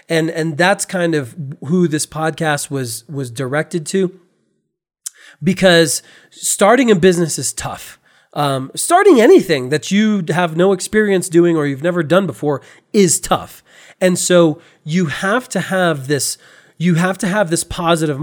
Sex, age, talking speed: male, 30-49, 155 wpm